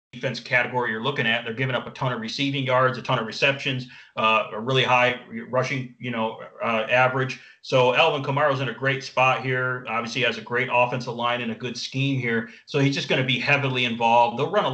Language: English